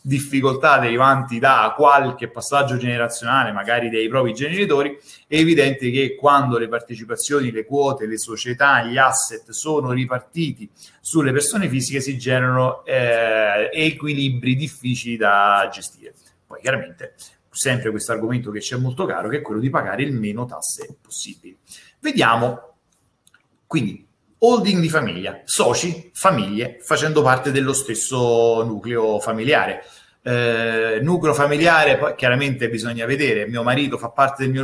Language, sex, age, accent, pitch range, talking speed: Italian, male, 30-49, native, 120-145 Hz, 135 wpm